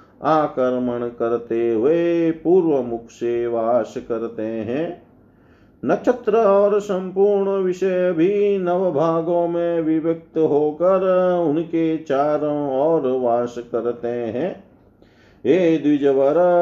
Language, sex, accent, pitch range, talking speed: Hindi, male, native, 140-185 Hz, 100 wpm